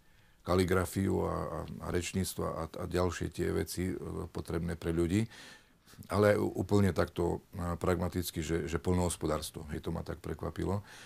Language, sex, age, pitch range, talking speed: Slovak, male, 40-59, 85-95 Hz, 145 wpm